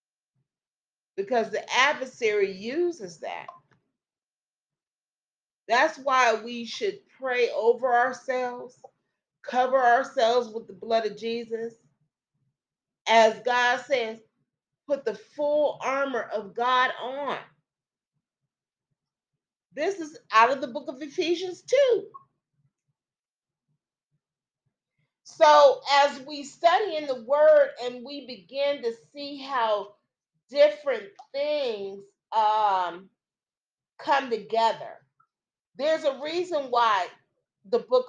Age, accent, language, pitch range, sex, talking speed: 40-59, American, English, 210-285 Hz, female, 100 wpm